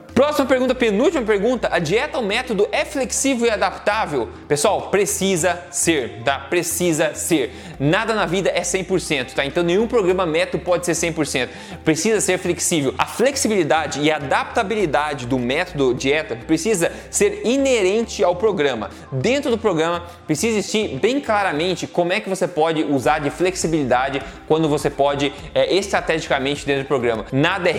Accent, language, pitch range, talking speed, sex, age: Brazilian, Portuguese, 145-190 Hz, 155 wpm, male, 20-39